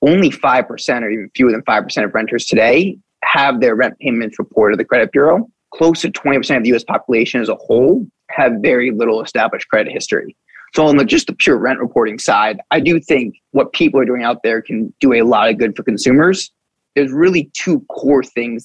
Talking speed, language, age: 210 wpm, English, 20-39